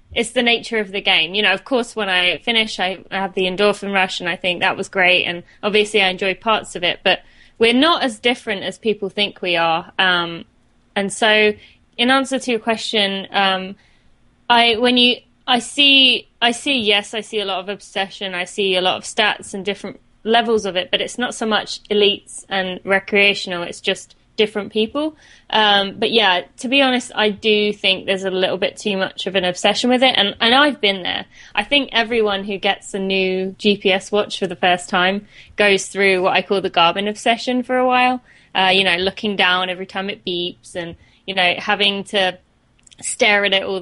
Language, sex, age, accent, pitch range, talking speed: English, female, 20-39, British, 190-225 Hz, 210 wpm